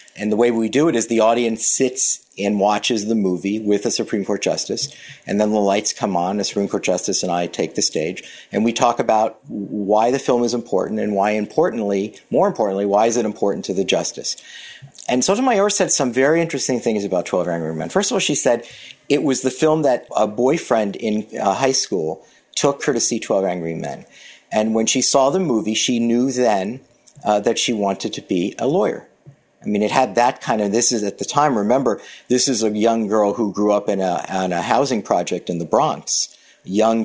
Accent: American